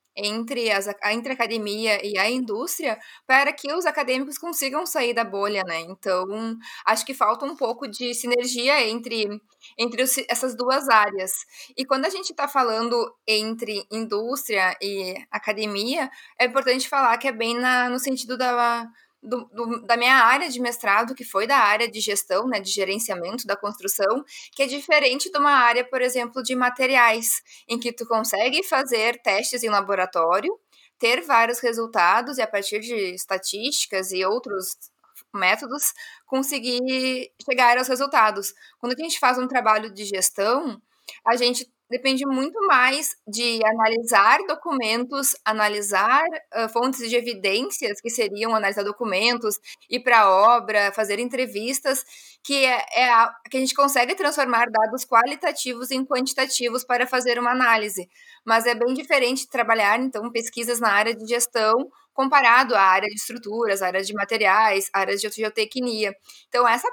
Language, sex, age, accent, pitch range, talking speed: Portuguese, female, 10-29, Brazilian, 215-260 Hz, 150 wpm